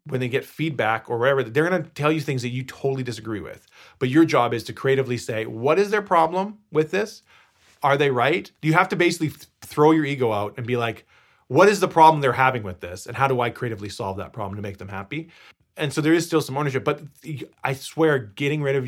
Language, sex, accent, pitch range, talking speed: English, male, American, 125-165 Hz, 245 wpm